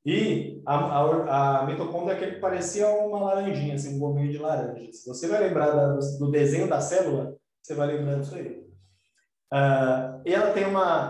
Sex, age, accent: male, 20-39, Brazilian